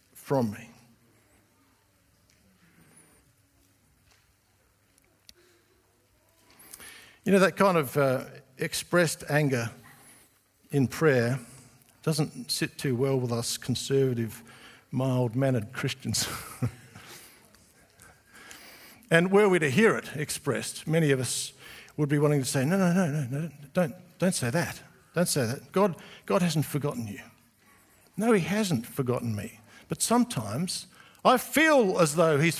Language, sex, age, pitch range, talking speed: English, male, 60-79, 130-195 Hz, 120 wpm